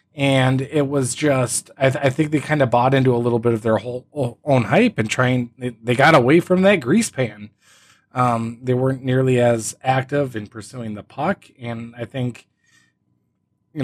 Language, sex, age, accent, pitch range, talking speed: English, male, 20-39, American, 115-145 Hz, 205 wpm